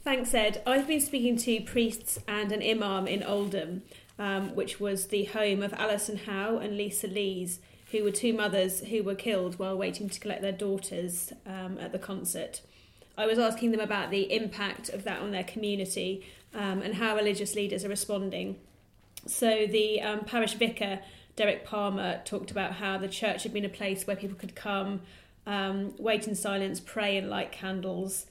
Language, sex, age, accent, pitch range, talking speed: English, female, 30-49, British, 190-215 Hz, 185 wpm